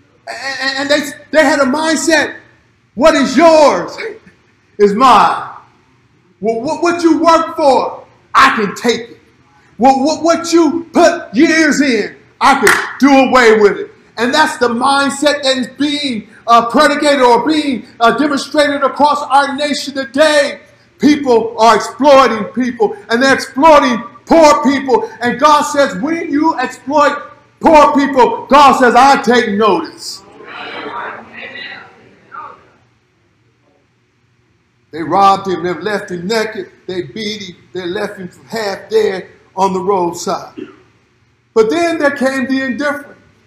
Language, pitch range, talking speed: English, 220-295 Hz, 135 wpm